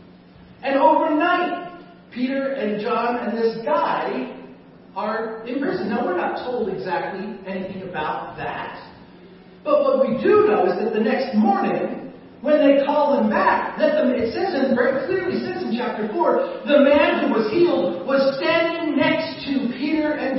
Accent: American